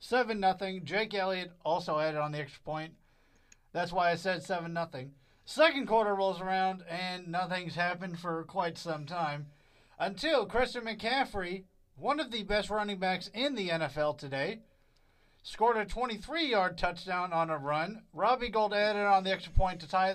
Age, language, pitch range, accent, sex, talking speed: 40-59, English, 165-225 Hz, American, male, 160 wpm